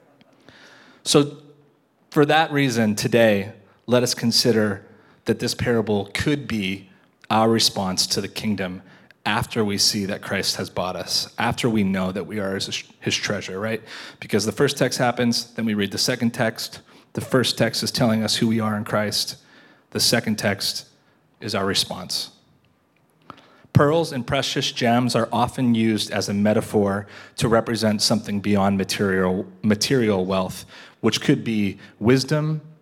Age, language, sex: 30-49, English, male